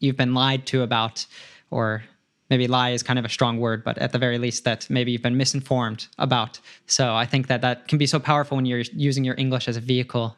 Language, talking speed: English, 245 wpm